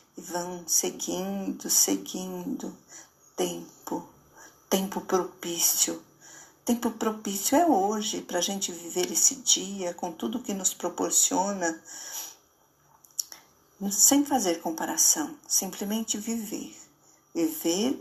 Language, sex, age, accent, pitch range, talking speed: Portuguese, female, 50-69, Brazilian, 190-275 Hz, 95 wpm